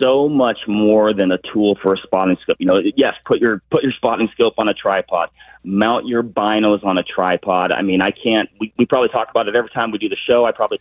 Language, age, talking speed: English, 30-49, 255 wpm